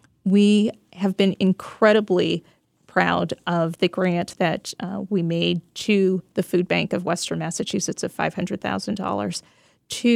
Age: 40-59